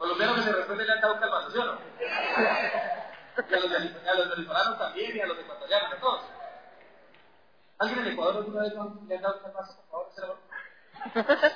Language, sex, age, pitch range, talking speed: Spanish, male, 40-59, 195-320 Hz, 95 wpm